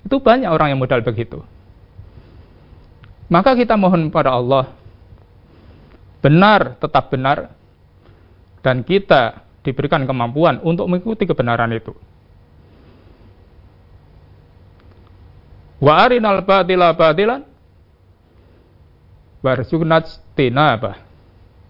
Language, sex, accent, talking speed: Indonesian, male, native, 80 wpm